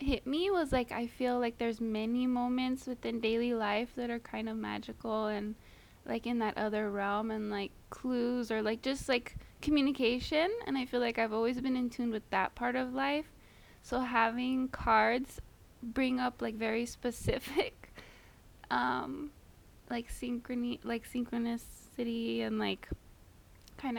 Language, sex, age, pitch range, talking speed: English, female, 20-39, 205-245 Hz, 155 wpm